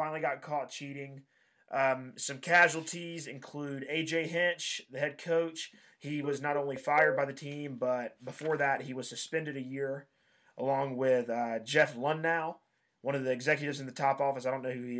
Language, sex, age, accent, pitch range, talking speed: English, male, 20-39, American, 125-150 Hz, 190 wpm